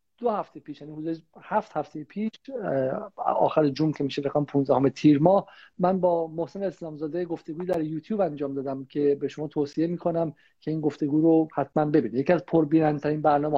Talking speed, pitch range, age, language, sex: 170 wpm, 150-185 Hz, 50-69, Persian, male